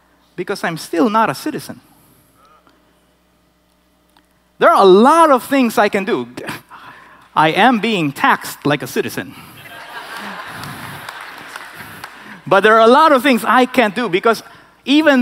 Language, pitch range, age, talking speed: English, 170-270 Hz, 30-49, 135 wpm